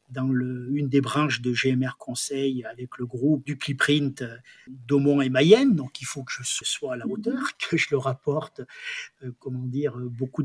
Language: French